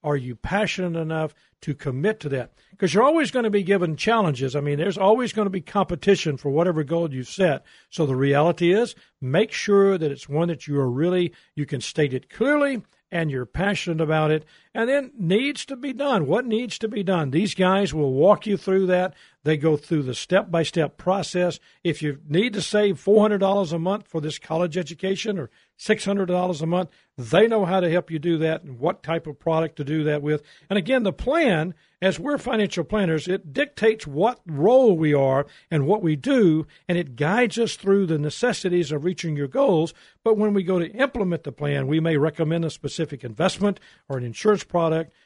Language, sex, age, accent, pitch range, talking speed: English, male, 50-69, American, 150-200 Hz, 205 wpm